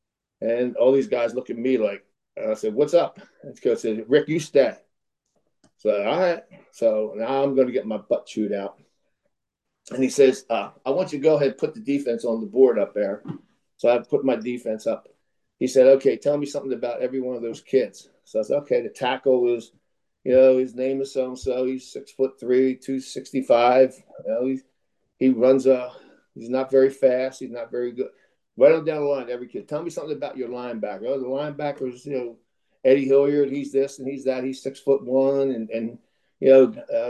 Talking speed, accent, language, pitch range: 215 wpm, American, English, 125-150 Hz